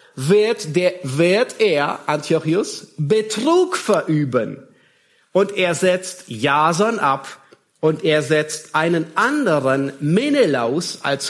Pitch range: 140-190 Hz